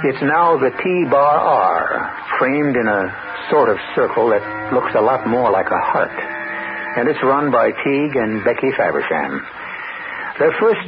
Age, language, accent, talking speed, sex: 60-79, English, American, 155 wpm, male